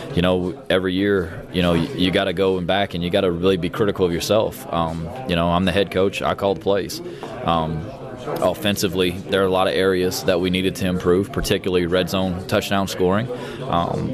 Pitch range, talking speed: 90-100 Hz, 215 wpm